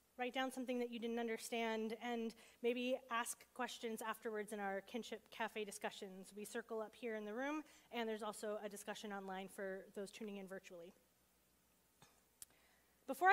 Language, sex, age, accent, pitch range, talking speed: English, female, 30-49, American, 225-270 Hz, 160 wpm